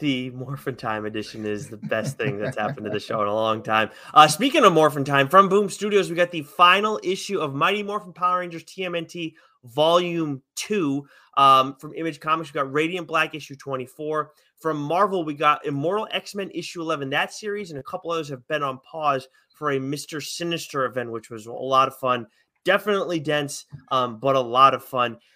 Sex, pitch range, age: male, 135-175 Hz, 30-49